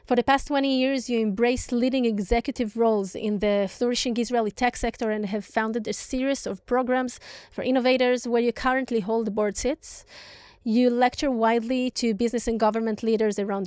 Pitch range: 210-245 Hz